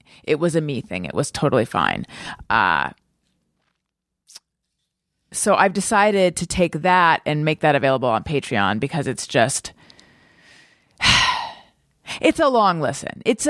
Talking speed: 135 wpm